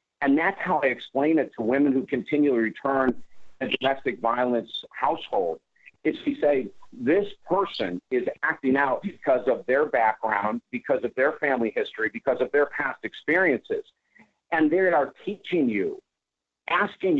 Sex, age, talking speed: male, 50-69, 150 wpm